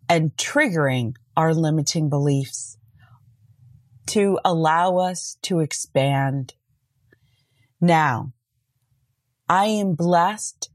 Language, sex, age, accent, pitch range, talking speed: English, female, 30-49, American, 135-185 Hz, 80 wpm